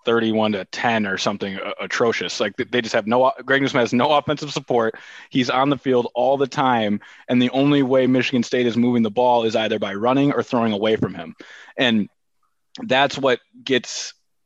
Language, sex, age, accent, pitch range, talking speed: English, male, 20-39, American, 115-135 Hz, 195 wpm